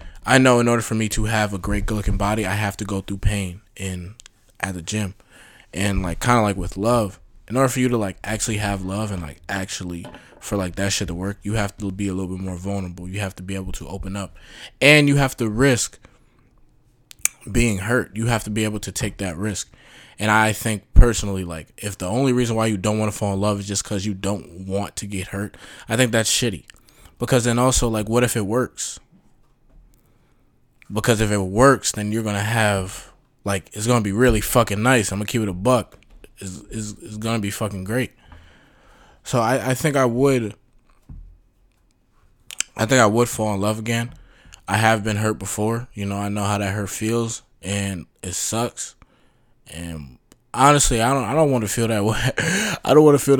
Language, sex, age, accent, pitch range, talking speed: English, male, 20-39, American, 100-120 Hz, 220 wpm